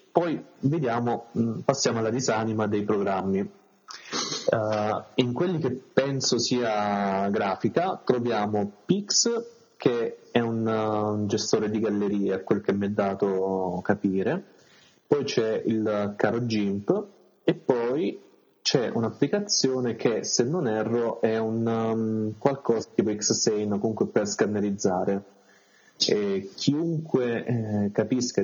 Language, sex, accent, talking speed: Italian, male, native, 120 wpm